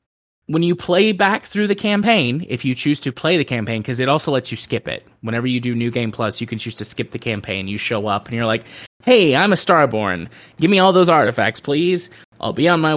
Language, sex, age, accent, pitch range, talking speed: English, male, 20-39, American, 115-160 Hz, 250 wpm